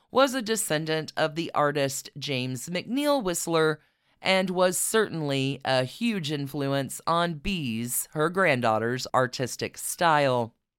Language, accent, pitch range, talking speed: English, American, 145-205 Hz, 115 wpm